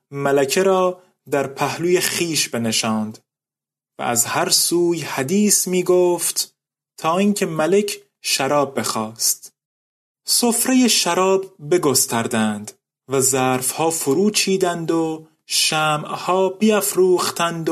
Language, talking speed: Persian, 90 wpm